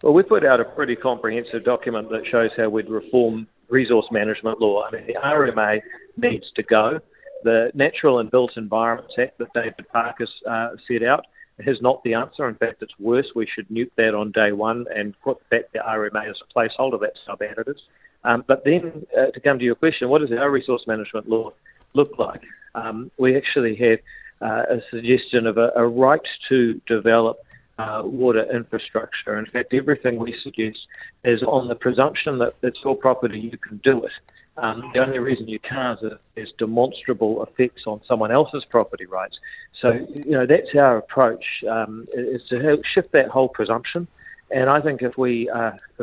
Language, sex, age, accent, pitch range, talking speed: English, male, 40-59, Australian, 115-130 Hz, 190 wpm